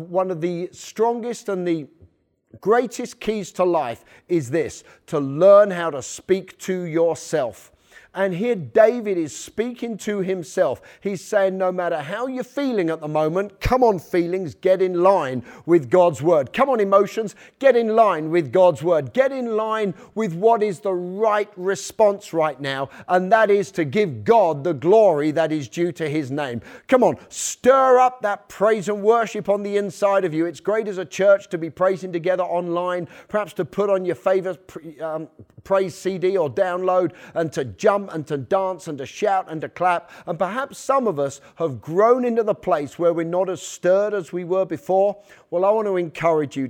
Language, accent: English, British